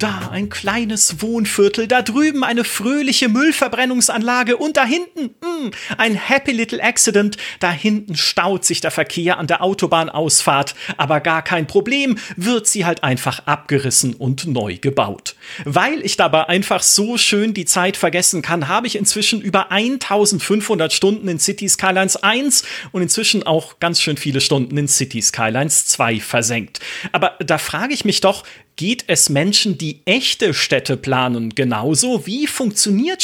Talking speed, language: 155 wpm, German